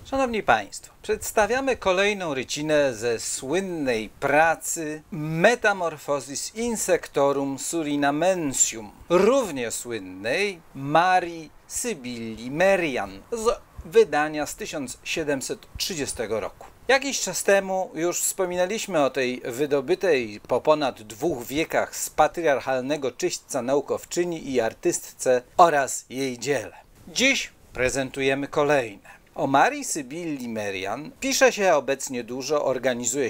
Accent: native